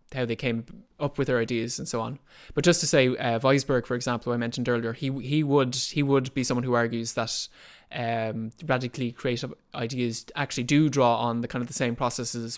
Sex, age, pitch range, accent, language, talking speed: male, 20-39, 115-130 Hz, Irish, English, 215 wpm